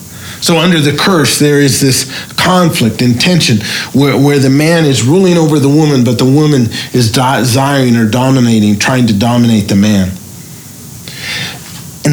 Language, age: English, 50-69